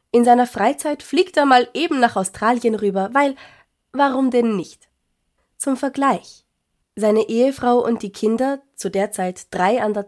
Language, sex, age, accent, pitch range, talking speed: German, female, 20-39, German, 185-235 Hz, 160 wpm